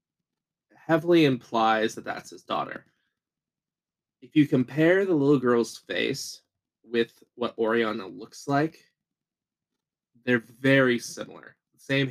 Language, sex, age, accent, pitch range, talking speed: English, male, 20-39, American, 115-140 Hz, 110 wpm